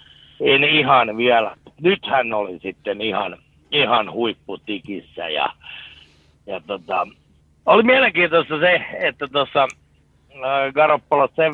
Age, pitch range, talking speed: 60-79, 110-145 Hz, 100 wpm